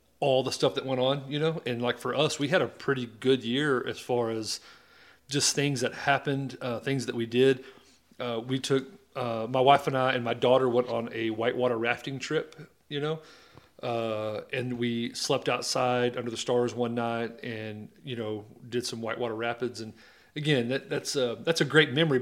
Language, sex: English, male